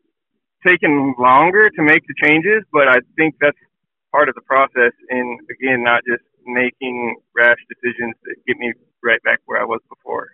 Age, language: 30-49, English